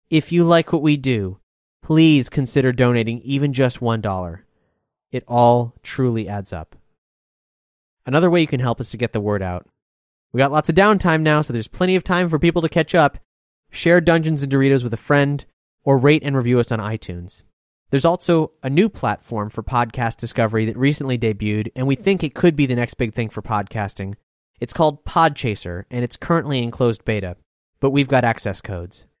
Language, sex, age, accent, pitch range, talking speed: English, male, 30-49, American, 110-150 Hz, 195 wpm